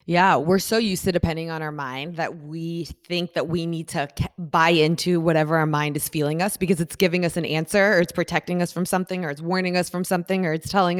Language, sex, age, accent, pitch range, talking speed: English, female, 20-39, American, 160-185 Hz, 250 wpm